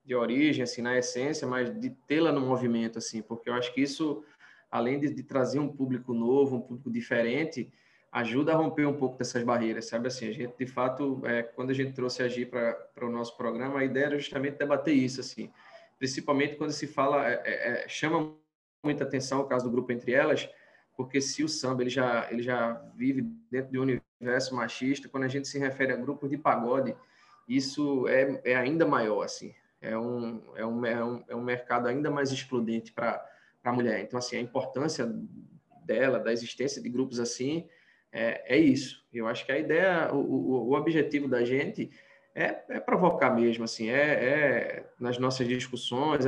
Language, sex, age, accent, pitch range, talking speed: Portuguese, male, 20-39, Brazilian, 120-140 Hz, 185 wpm